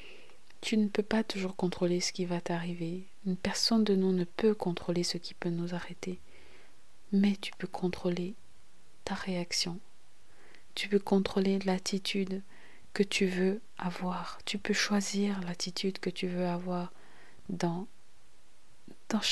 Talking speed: 145 wpm